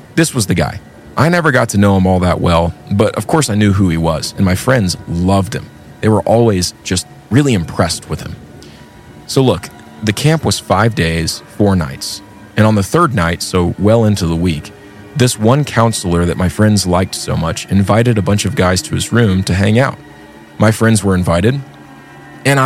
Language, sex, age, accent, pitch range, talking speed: English, male, 30-49, American, 85-115 Hz, 205 wpm